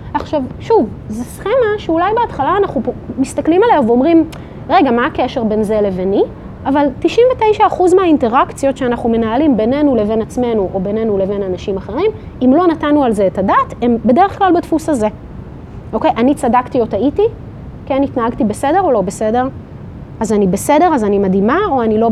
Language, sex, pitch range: Hebrew, female, 215-310 Hz